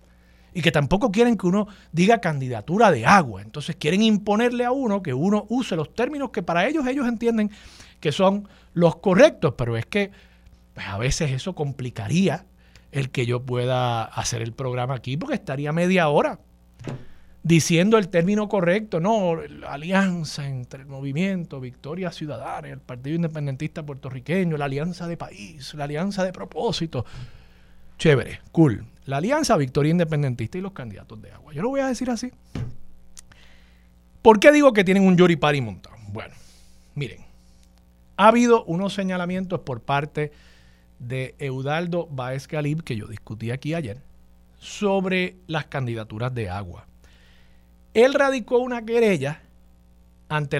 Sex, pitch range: male, 110-185 Hz